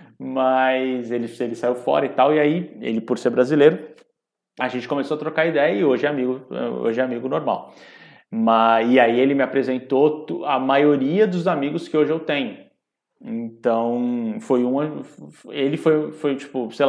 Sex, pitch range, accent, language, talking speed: male, 115-155 Hz, Brazilian, English, 170 wpm